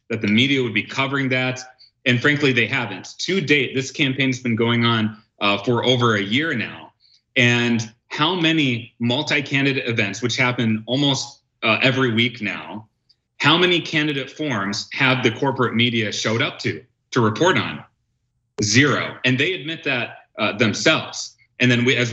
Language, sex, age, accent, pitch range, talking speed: English, male, 30-49, American, 115-135 Hz, 165 wpm